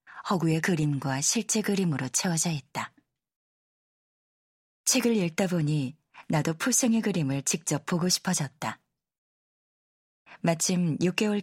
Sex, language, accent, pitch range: female, Korean, native, 150-200 Hz